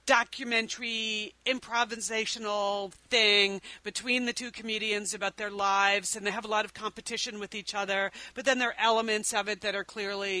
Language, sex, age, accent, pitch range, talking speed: English, female, 40-59, American, 190-235 Hz, 175 wpm